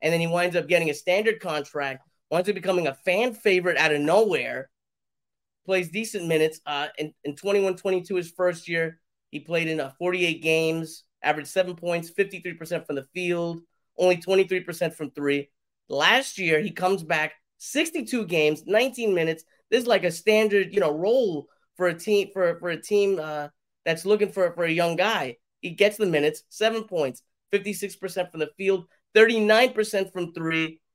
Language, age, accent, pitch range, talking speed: English, 30-49, American, 160-195 Hz, 175 wpm